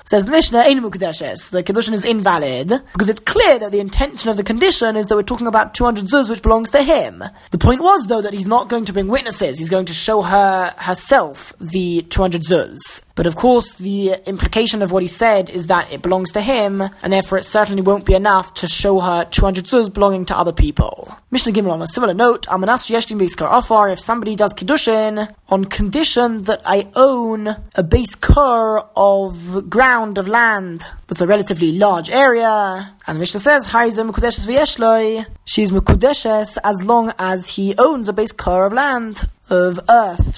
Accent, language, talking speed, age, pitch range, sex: British, English, 175 wpm, 20-39, 190-230 Hz, male